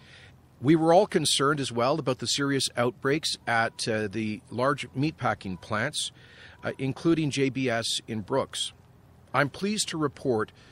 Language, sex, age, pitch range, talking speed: English, male, 40-59, 115-145 Hz, 140 wpm